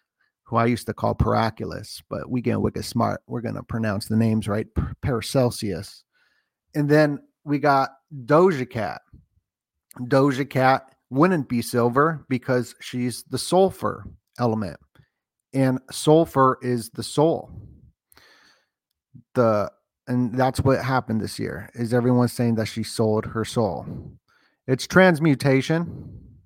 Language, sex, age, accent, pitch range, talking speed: English, male, 40-59, American, 110-130 Hz, 125 wpm